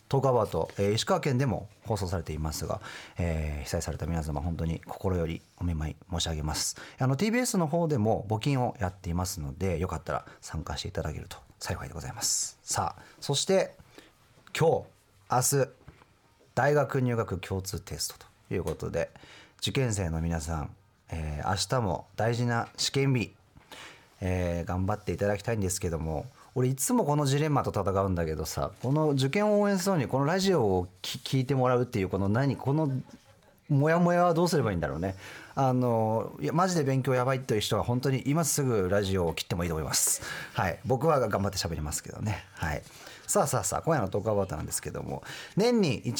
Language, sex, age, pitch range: Japanese, male, 40-59, 90-135 Hz